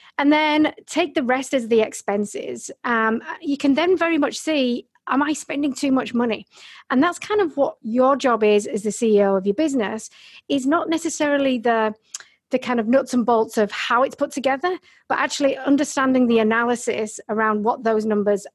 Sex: female